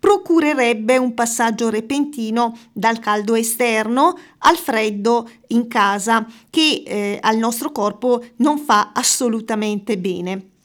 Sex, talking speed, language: female, 115 wpm, Italian